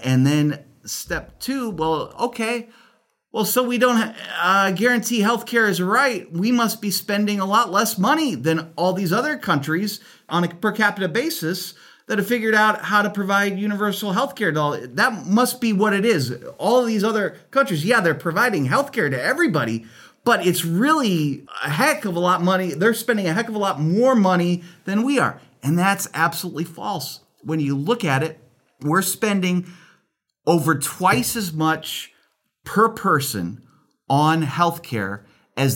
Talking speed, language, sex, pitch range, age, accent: 170 wpm, English, male, 130-210 Hz, 30-49, American